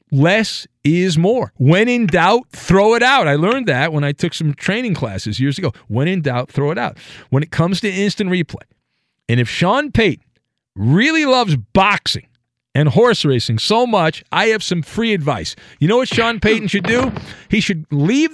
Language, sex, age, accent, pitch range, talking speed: English, male, 50-69, American, 150-220 Hz, 195 wpm